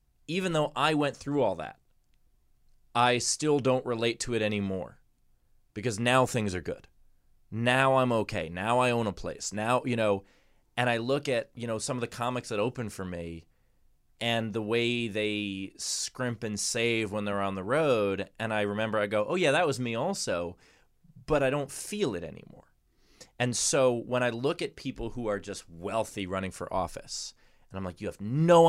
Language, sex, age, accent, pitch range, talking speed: English, male, 20-39, American, 105-130 Hz, 195 wpm